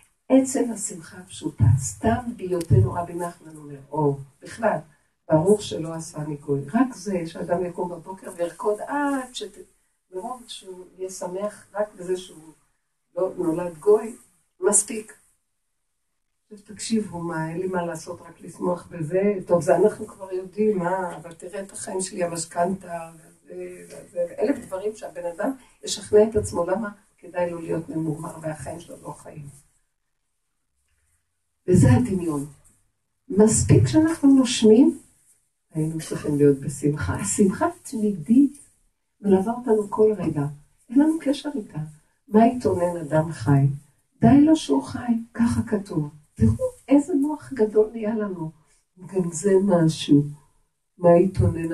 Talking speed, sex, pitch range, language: 130 wpm, female, 155-220 Hz, Hebrew